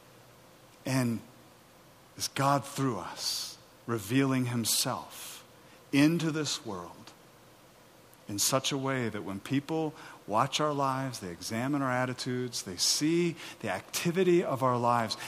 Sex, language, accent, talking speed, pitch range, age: male, English, American, 120 wpm, 110-150 Hz, 50-69